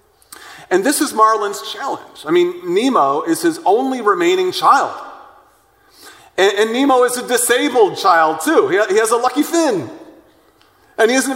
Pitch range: 245-395 Hz